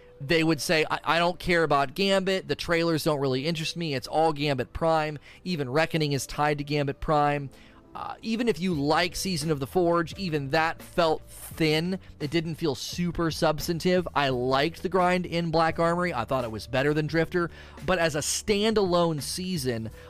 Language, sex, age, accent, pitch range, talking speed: English, male, 30-49, American, 130-170 Hz, 190 wpm